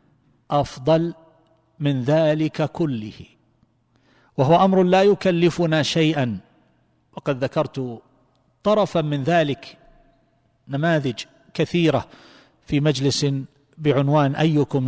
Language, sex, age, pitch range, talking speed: Arabic, male, 50-69, 125-155 Hz, 80 wpm